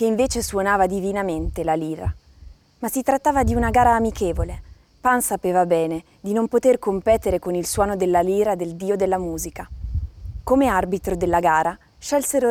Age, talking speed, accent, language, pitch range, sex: 20-39, 165 wpm, native, Italian, 170-225 Hz, female